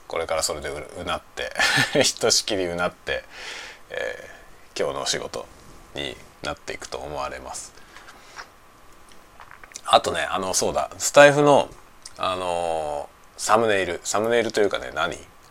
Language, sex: Japanese, male